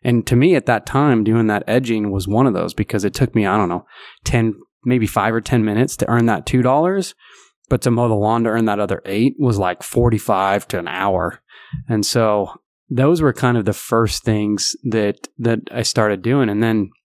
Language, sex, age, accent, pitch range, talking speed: English, male, 20-39, American, 105-120 Hz, 225 wpm